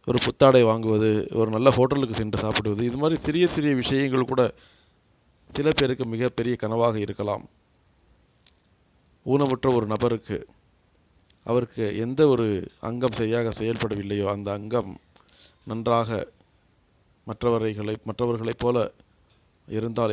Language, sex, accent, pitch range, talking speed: Tamil, male, native, 105-120 Hz, 105 wpm